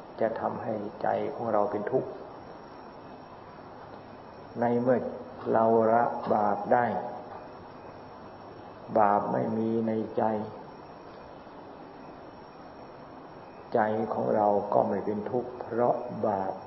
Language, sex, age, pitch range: Thai, male, 50-69, 105-115 Hz